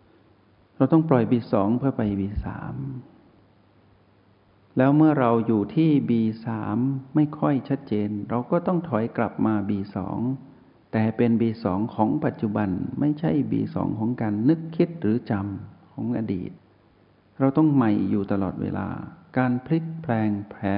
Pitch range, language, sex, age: 100-125 Hz, Thai, male, 60-79